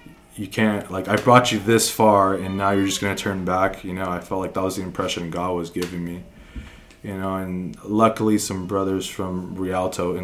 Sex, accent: male, American